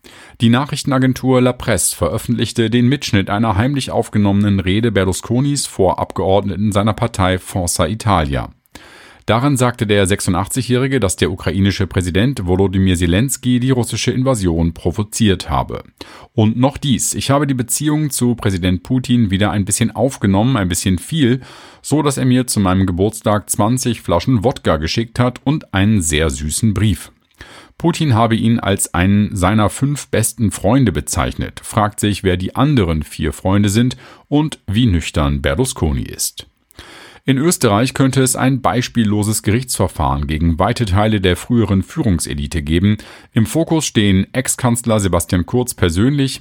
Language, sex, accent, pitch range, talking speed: German, male, German, 95-125 Hz, 145 wpm